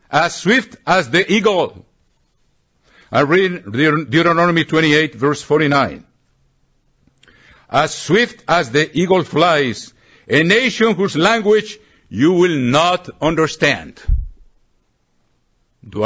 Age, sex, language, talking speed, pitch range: 60-79, male, English, 95 wpm, 125-180 Hz